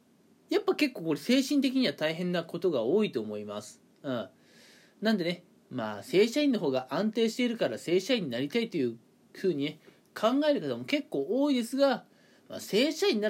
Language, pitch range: Japanese, 140-235 Hz